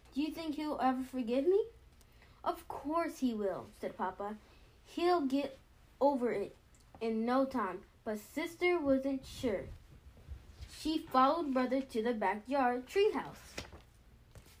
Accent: American